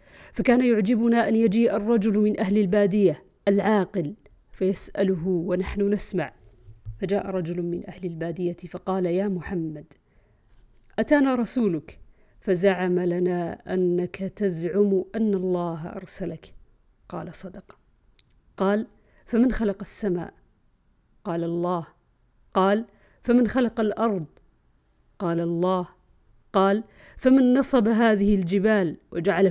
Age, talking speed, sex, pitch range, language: 50-69, 100 wpm, female, 180-230 Hz, Arabic